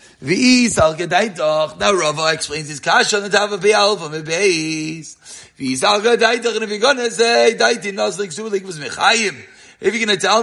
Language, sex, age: English, male, 40-59